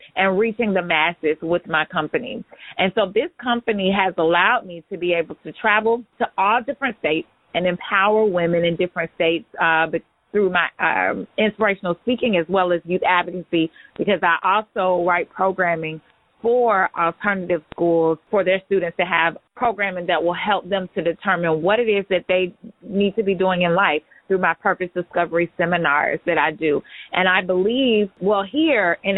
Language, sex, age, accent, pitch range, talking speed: English, female, 30-49, American, 170-200 Hz, 175 wpm